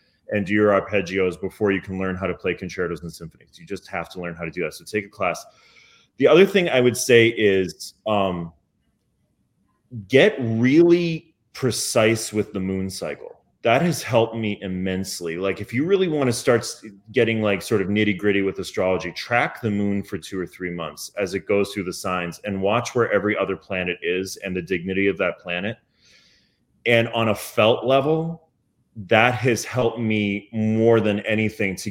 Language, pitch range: English, 95-115 Hz